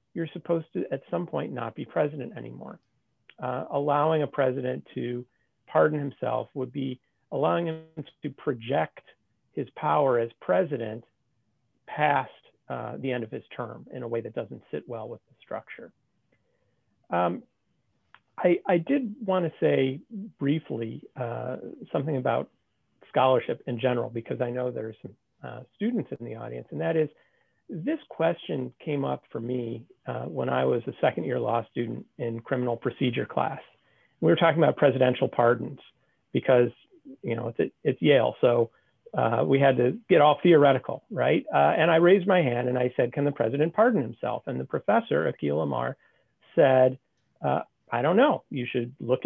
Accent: American